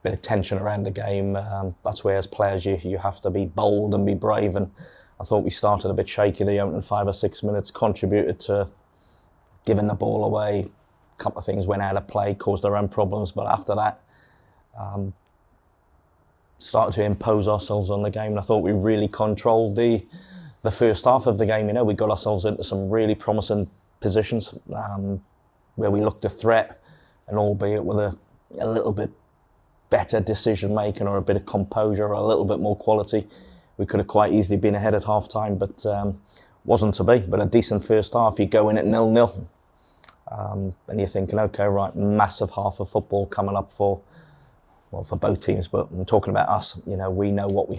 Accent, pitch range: British, 100-105 Hz